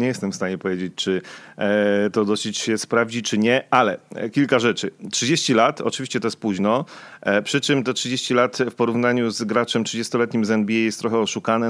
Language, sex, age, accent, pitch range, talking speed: Polish, male, 30-49, native, 105-120 Hz, 185 wpm